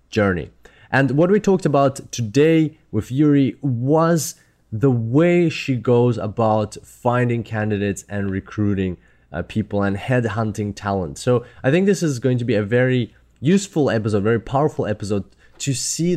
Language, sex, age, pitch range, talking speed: English, male, 20-39, 100-125 Hz, 150 wpm